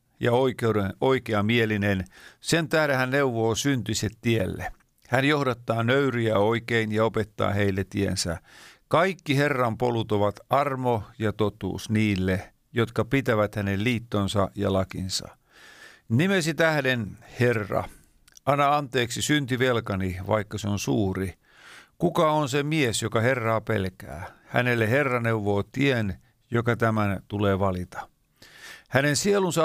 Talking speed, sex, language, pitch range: 115 wpm, male, Finnish, 105-135 Hz